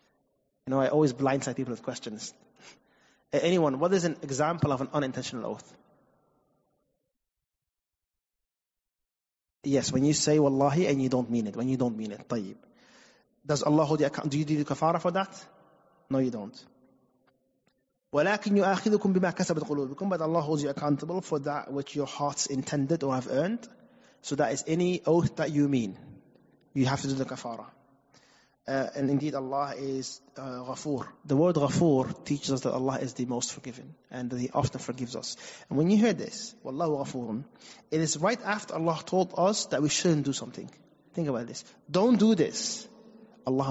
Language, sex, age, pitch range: English, male, 30-49, 130-170 Hz